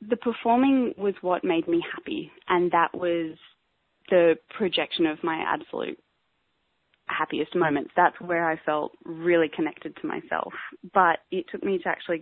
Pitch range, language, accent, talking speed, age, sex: 165-210 Hz, English, Australian, 150 wpm, 20-39, female